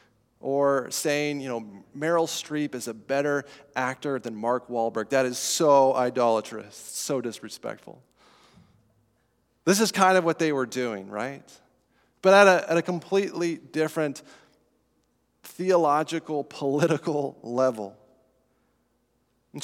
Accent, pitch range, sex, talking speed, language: American, 130-185 Hz, male, 115 wpm, English